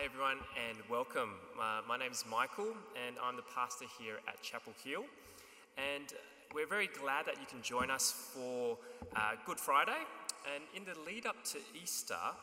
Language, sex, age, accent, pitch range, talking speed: English, male, 20-39, Australian, 110-155 Hz, 175 wpm